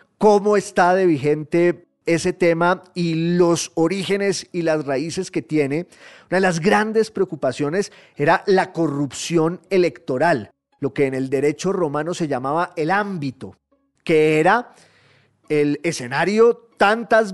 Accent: Colombian